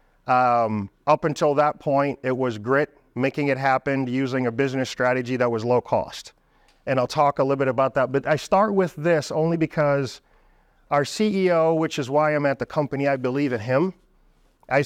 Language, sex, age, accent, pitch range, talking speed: English, male, 40-59, American, 130-155 Hz, 195 wpm